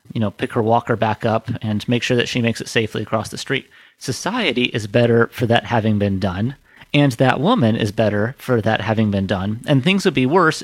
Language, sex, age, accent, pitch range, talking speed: English, male, 30-49, American, 115-145 Hz, 230 wpm